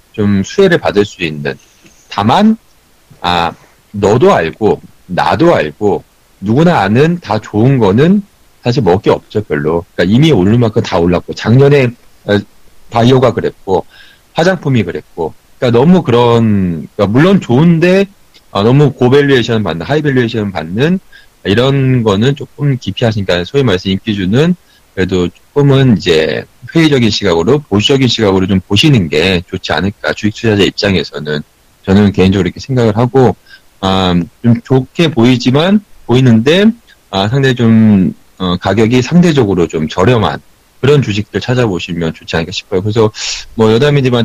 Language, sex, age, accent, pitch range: Korean, male, 40-59, native, 95-135 Hz